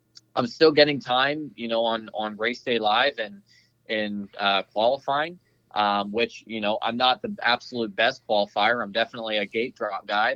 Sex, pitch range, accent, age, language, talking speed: male, 105-120 Hz, American, 20-39, English, 180 wpm